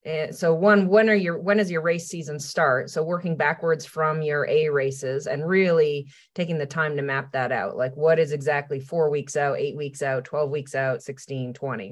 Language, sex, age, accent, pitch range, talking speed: English, female, 30-49, American, 145-175 Hz, 210 wpm